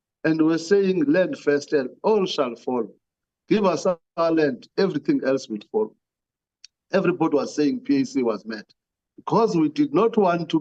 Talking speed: 165 wpm